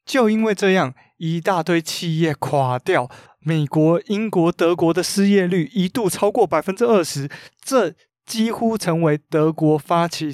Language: Chinese